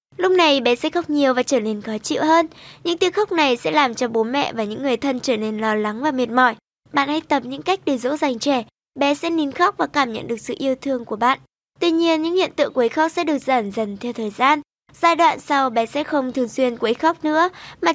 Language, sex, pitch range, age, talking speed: Vietnamese, male, 245-315 Hz, 10-29, 270 wpm